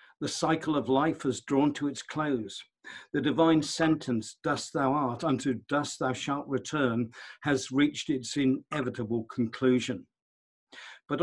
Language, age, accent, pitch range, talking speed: English, 50-69, British, 125-155 Hz, 140 wpm